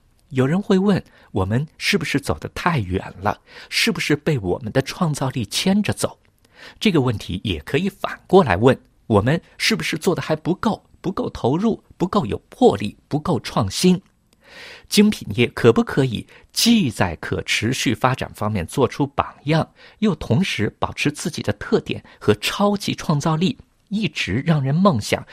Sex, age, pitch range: male, 50-69, 110-160 Hz